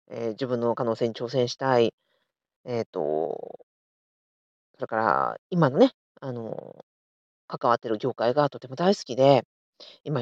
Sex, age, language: female, 40-59, Japanese